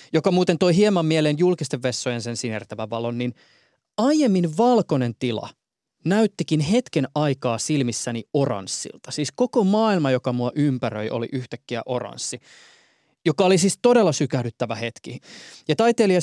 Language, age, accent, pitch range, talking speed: Finnish, 20-39, native, 120-170 Hz, 135 wpm